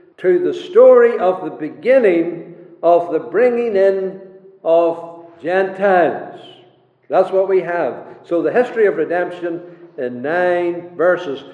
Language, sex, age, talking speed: English, male, 60-79, 125 wpm